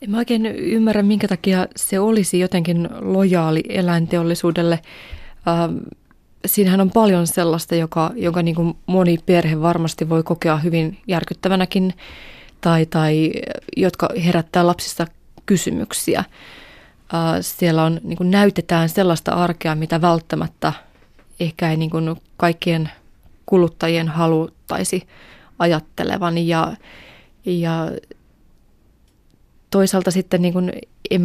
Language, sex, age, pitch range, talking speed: Finnish, female, 20-39, 165-185 Hz, 100 wpm